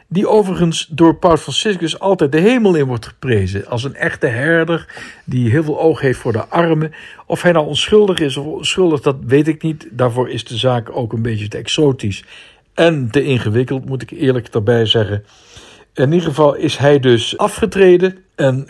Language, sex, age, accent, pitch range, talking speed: Dutch, male, 60-79, Dutch, 120-165 Hz, 190 wpm